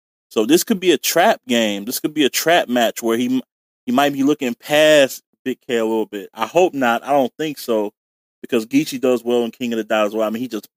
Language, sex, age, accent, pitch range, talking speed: English, male, 20-39, American, 115-145 Hz, 260 wpm